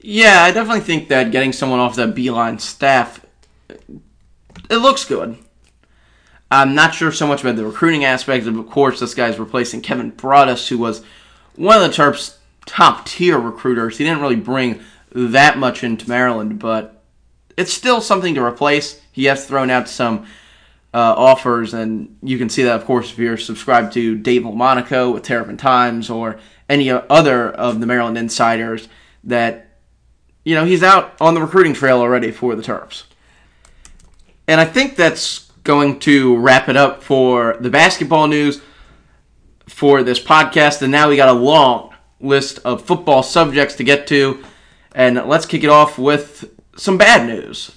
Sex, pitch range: male, 115-145 Hz